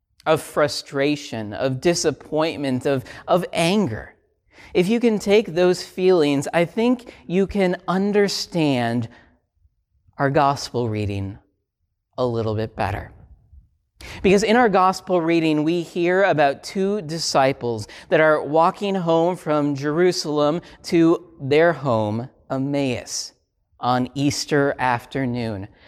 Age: 40-59